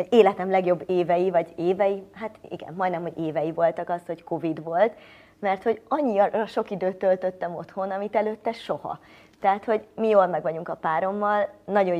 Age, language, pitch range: 30-49, Hungarian, 170-215 Hz